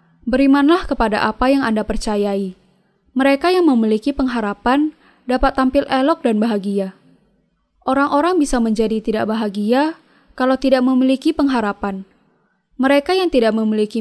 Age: 10-29